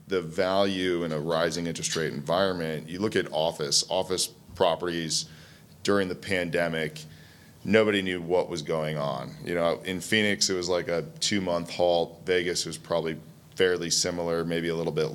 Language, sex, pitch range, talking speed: English, male, 85-95 Hz, 170 wpm